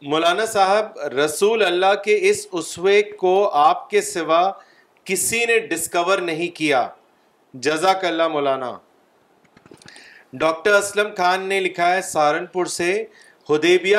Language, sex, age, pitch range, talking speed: Urdu, male, 40-59, 165-220 Hz, 120 wpm